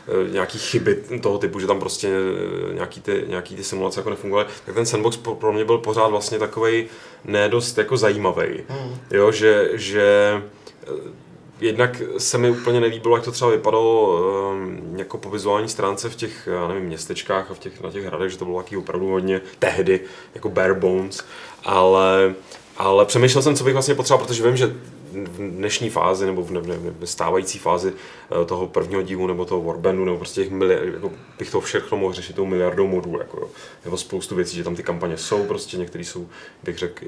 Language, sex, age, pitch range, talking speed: Czech, male, 30-49, 95-110 Hz, 190 wpm